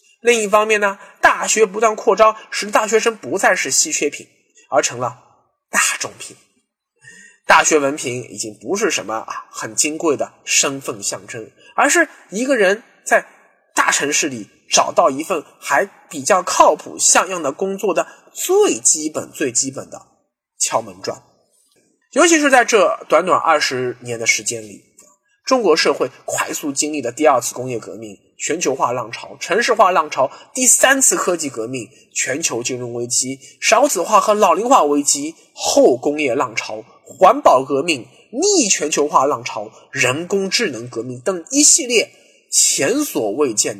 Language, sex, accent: Chinese, male, native